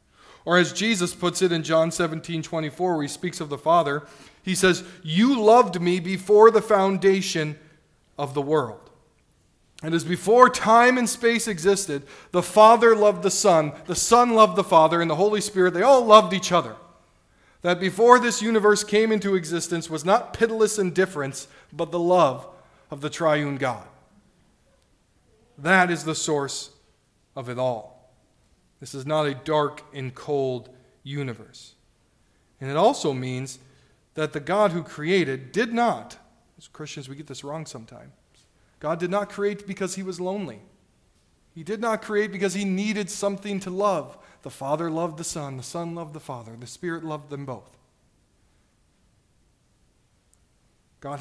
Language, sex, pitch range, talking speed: English, male, 140-195 Hz, 160 wpm